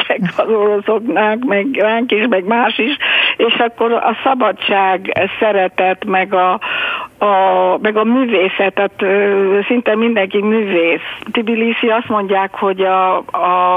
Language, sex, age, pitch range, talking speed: Hungarian, female, 60-79, 185-215 Hz, 120 wpm